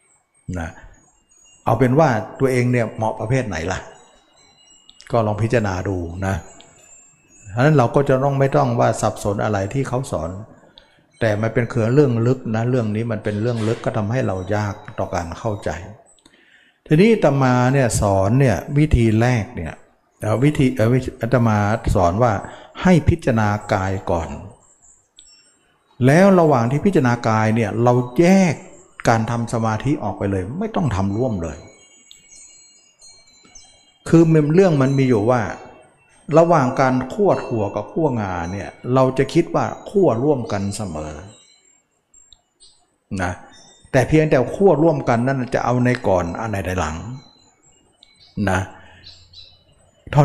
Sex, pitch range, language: male, 100-135 Hz, Thai